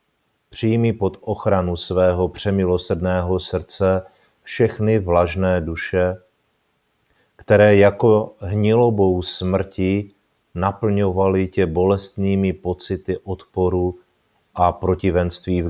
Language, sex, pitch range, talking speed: Czech, male, 85-100 Hz, 80 wpm